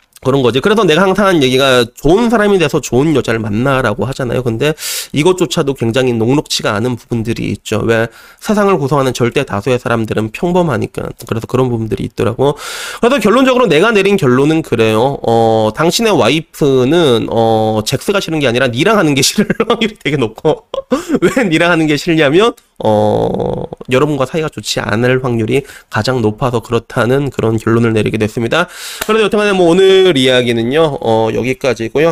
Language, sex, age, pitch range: Korean, male, 30-49, 120-165 Hz